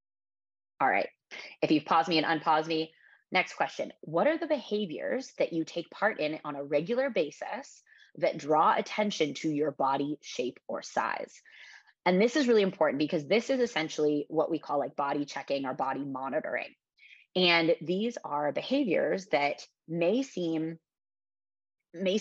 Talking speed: 160 wpm